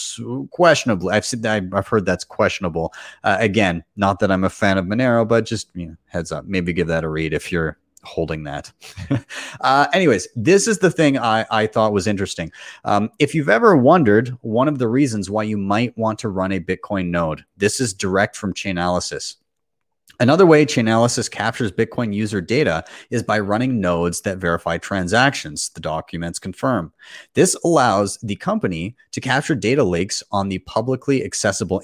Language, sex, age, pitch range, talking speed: English, male, 30-49, 90-120 Hz, 170 wpm